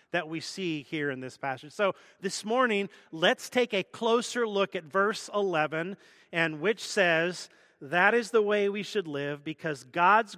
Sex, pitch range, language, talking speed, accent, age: male, 145-195 Hz, English, 175 wpm, American, 40-59